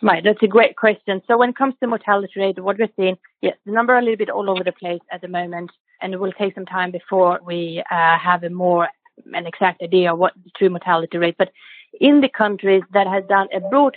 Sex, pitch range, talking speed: female, 180-215 Hz, 255 wpm